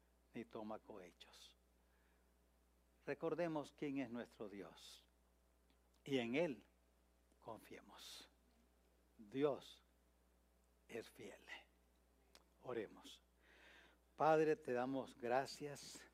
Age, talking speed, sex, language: 60-79, 75 wpm, male, English